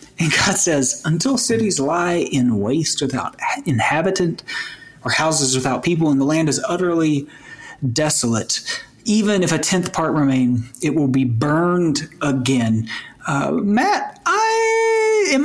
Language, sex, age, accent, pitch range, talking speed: English, male, 40-59, American, 130-185 Hz, 135 wpm